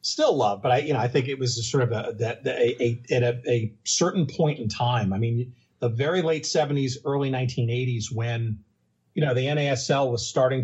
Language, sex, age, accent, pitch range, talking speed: English, male, 40-59, American, 120-145 Hz, 210 wpm